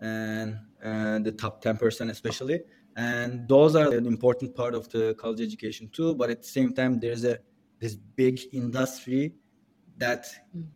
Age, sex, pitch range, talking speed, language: 20-39, male, 115-140 Hz, 155 wpm, English